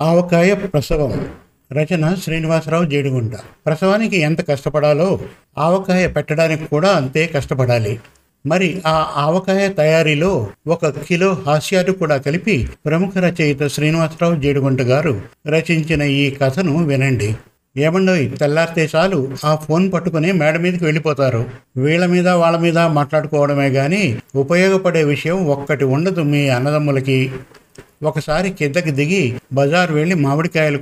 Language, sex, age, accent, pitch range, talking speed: Telugu, male, 50-69, native, 140-175 Hz, 110 wpm